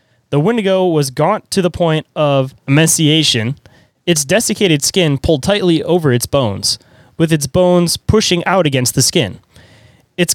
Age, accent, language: 20-39, American, English